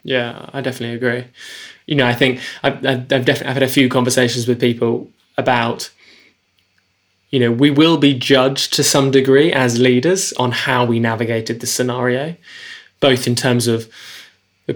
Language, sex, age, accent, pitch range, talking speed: English, male, 10-29, British, 120-140 Hz, 165 wpm